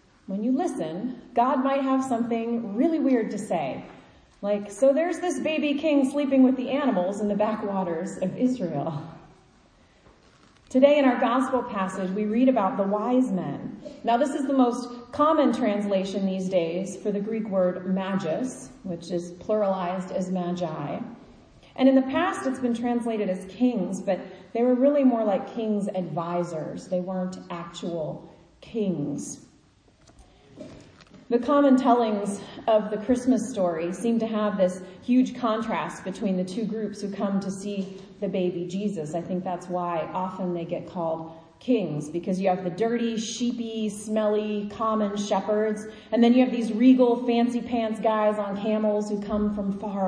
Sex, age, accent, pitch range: female, 30-49, American, 190-245 Hz